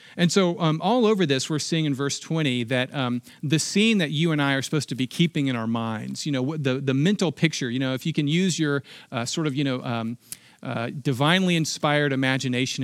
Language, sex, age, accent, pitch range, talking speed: English, male, 40-59, American, 135-170 Hz, 235 wpm